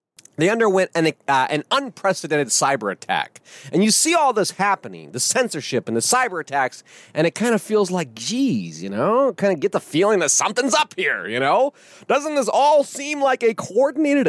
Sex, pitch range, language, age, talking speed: male, 175-270 Hz, English, 30-49, 195 wpm